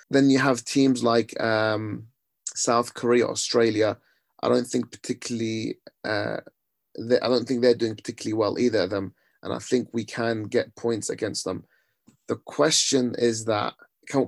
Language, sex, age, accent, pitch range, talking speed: English, male, 30-49, British, 110-125 Hz, 165 wpm